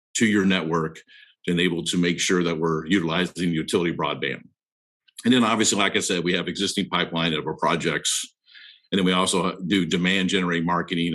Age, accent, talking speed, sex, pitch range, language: 50-69, American, 185 wpm, male, 85-95 Hz, English